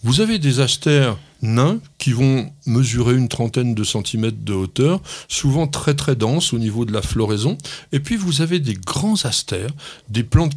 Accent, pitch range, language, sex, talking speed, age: French, 115-155 Hz, French, male, 180 wpm, 60-79